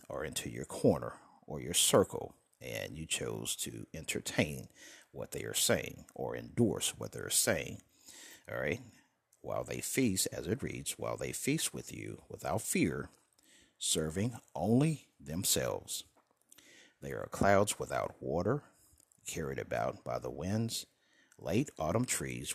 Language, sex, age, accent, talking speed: English, male, 60-79, American, 140 wpm